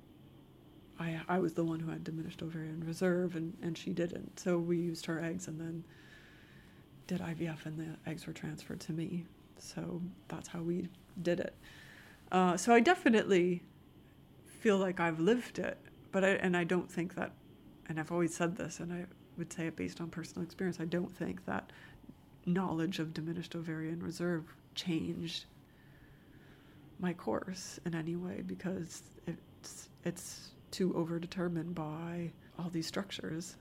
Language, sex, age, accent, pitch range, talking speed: English, female, 30-49, American, 165-180 Hz, 160 wpm